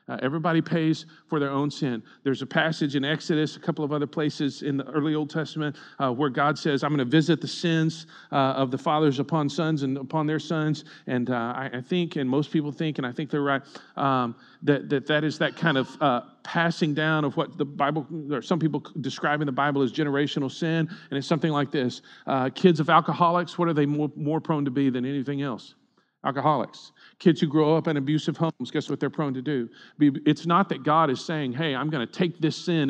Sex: male